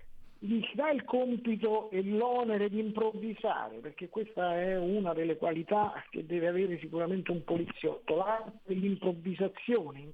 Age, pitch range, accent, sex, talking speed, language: 50-69, 170-220 Hz, native, male, 135 wpm, Italian